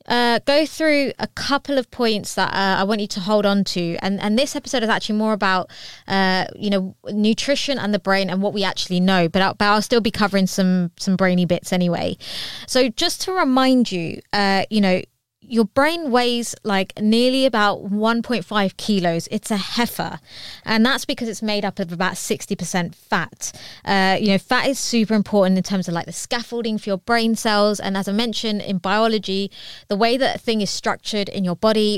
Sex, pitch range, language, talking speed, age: female, 190-225 Hz, English, 205 wpm, 20-39